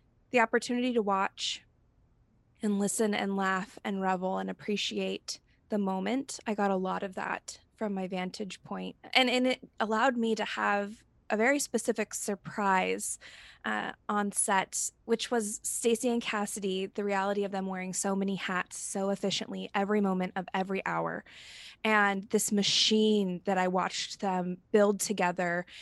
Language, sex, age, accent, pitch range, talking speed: English, female, 20-39, American, 190-220 Hz, 155 wpm